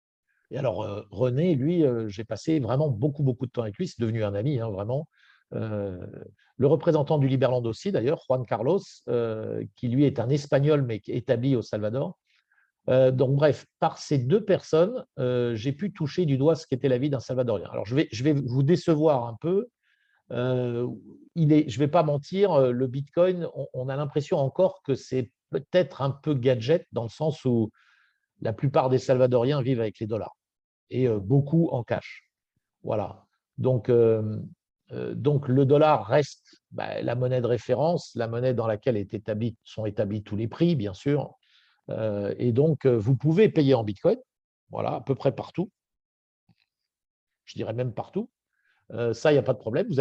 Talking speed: 185 wpm